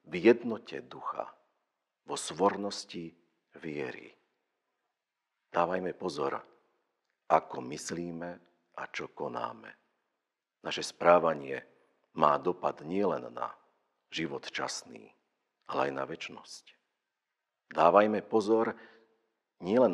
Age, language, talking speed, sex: 50-69, Slovak, 85 wpm, male